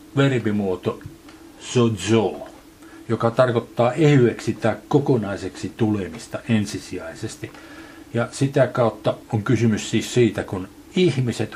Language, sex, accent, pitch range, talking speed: Finnish, male, native, 110-140 Hz, 95 wpm